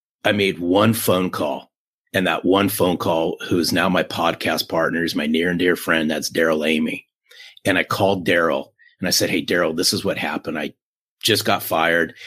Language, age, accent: English, 40-59, American